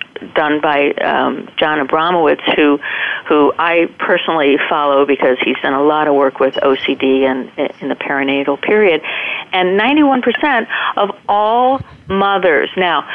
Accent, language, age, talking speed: American, English, 50-69, 140 wpm